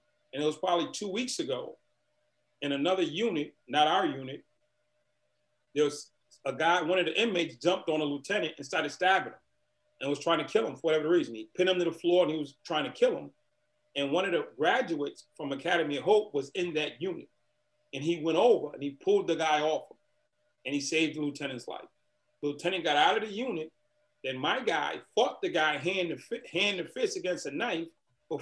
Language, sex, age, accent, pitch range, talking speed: English, male, 40-59, American, 145-190 Hz, 220 wpm